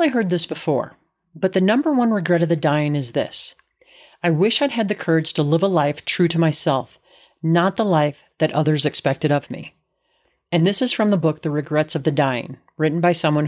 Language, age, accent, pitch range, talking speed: English, 40-59, American, 150-205 Hz, 220 wpm